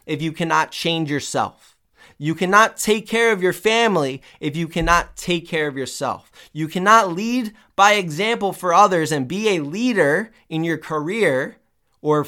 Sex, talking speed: male, 165 wpm